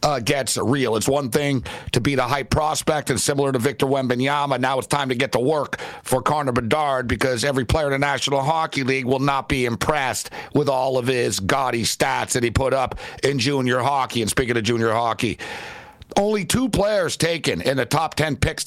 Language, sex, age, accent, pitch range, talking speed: English, male, 60-79, American, 130-155 Hz, 210 wpm